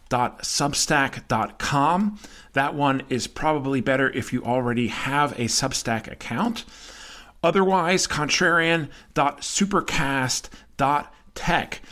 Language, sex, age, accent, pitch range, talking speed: English, male, 40-59, American, 120-150 Hz, 80 wpm